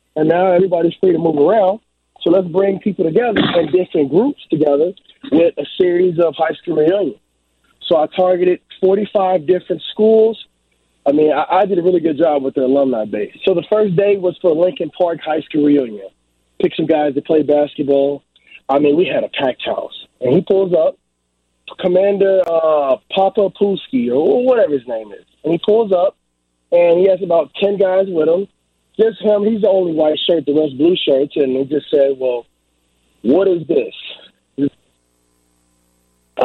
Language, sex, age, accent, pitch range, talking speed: English, male, 30-49, American, 145-200 Hz, 185 wpm